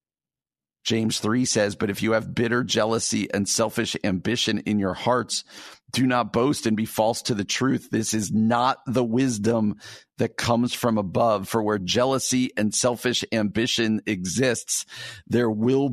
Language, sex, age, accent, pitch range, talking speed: English, male, 50-69, American, 105-130 Hz, 160 wpm